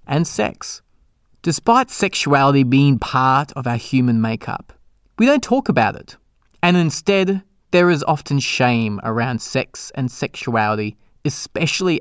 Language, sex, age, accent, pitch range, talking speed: English, male, 20-39, Australian, 120-180 Hz, 130 wpm